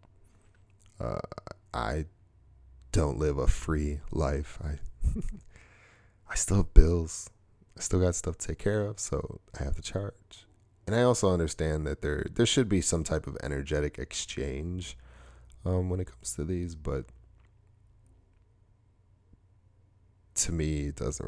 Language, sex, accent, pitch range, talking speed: English, male, American, 75-100 Hz, 140 wpm